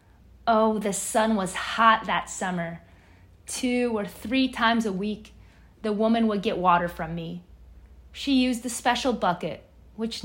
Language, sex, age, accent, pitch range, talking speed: English, female, 20-39, American, 165-220 Hz, 150 wpm